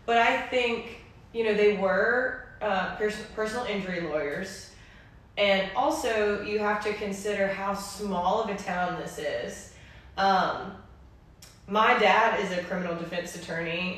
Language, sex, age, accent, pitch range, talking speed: English, female, 20-39, American, 180-215 Hz, 135 wpm